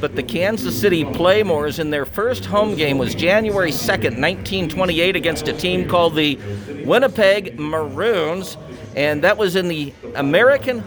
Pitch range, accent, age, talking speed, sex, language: 140-180 Hz, American, 50-69, 150 wpm, male, English